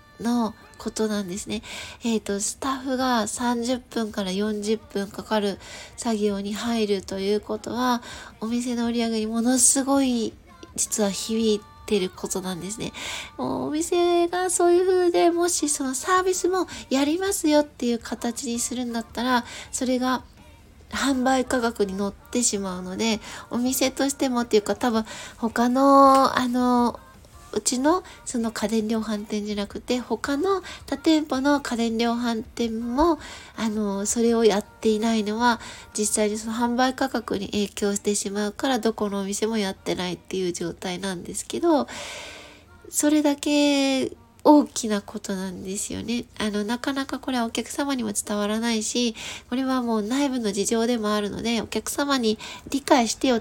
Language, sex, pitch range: Japanese, female, 210-265 Hz